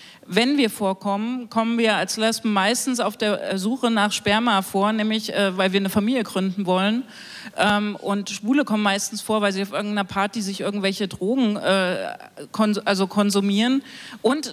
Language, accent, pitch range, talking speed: German, German, 195-225 Hz, 170 wpm